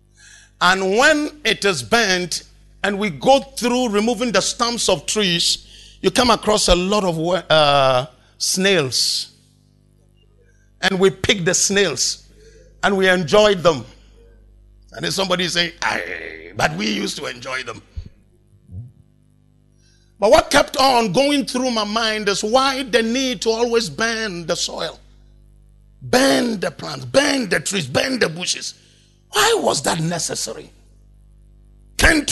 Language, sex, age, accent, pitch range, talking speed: English, male, 50-69, Nigerian, 165-275 Hz, 135 wpm